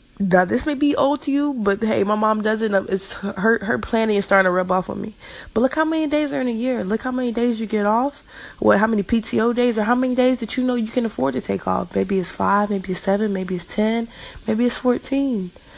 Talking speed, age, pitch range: 265 wpm, 20-39, 190-240 Hz